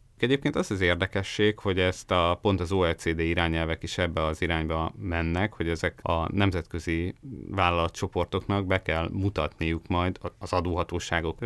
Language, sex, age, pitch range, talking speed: Hungarian, male, 30-49, 85-105 Hz, 140 wpm